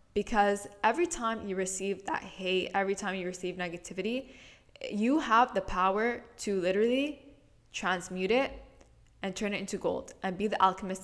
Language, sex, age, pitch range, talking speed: English, female, 10-29, 180-210 Hz, 160 wpm